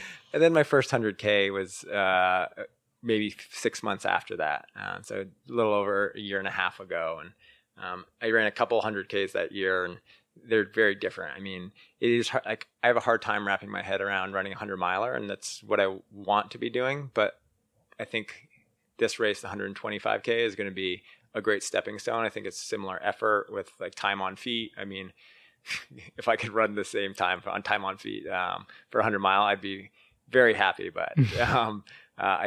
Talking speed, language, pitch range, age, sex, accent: 205 wpm, English, 95-115 Hz, 20-39, male, American